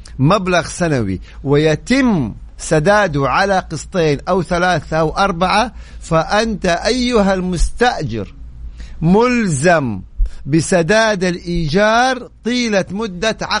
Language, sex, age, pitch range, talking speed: Arabic, male, 50-69, 145-205 Hz, 80 wpm